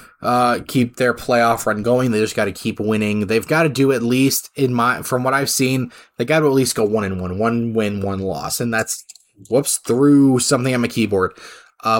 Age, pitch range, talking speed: 20-39, 110-130 Hz, 230 wpm